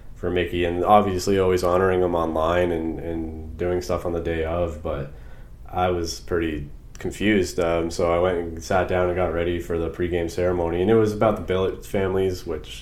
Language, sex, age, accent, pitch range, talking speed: English, male, 20-39, American, 80-95 Hz, 200 wpm